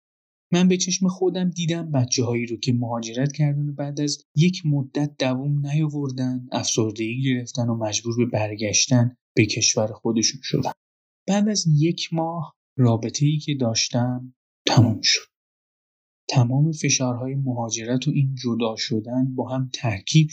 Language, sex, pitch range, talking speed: Persian, male, 120-145 Hz, 140 wpm